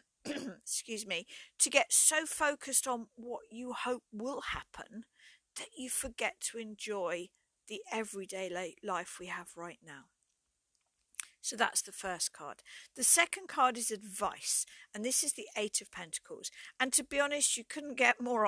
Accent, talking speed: British, 160 wpm